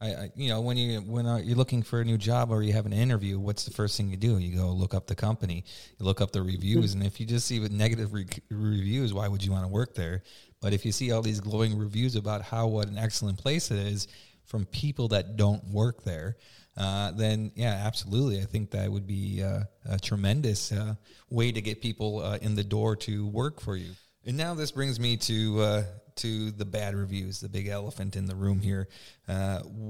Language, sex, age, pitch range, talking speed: English, male, 30-49, 100-115 Hz, 235 wpm